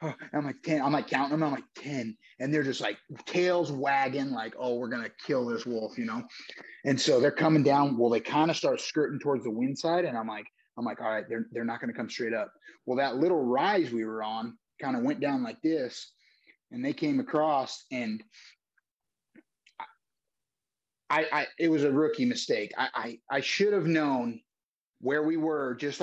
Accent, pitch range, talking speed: American, 125-180 Hz, 205 wpm